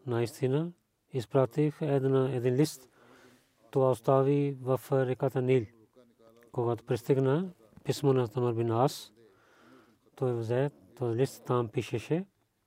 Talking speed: 105 wpm